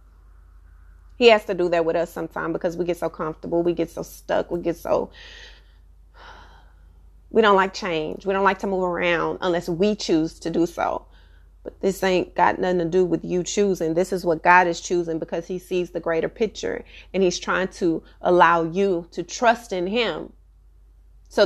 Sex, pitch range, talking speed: female, 170-215 Hz, 195 wpm